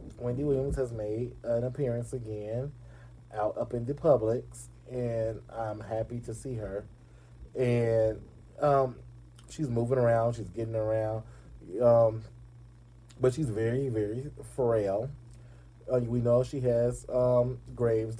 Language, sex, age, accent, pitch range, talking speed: English, male, 20-39, American, 115-125 Hz, 130 wpm